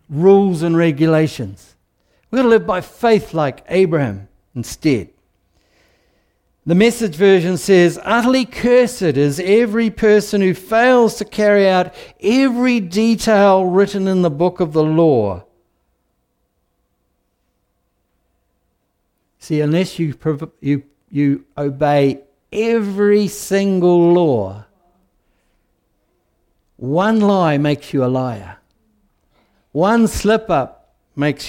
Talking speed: 105 wpm